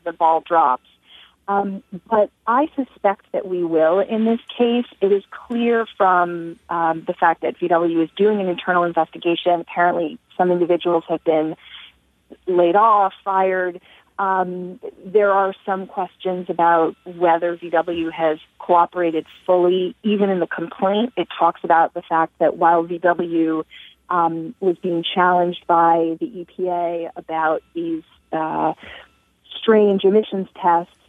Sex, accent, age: female, American, 30-49